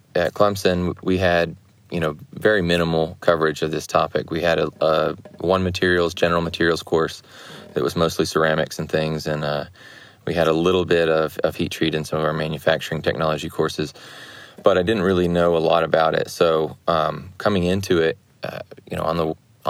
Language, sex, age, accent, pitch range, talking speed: English, male, 20-39, American, 80-90 Hz, 195 wpm